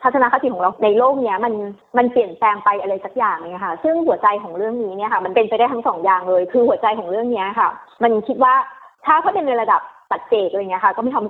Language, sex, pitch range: Thai, female, 215-295 Hz